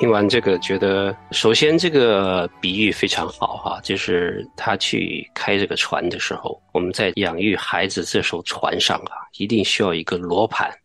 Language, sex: Chinese, male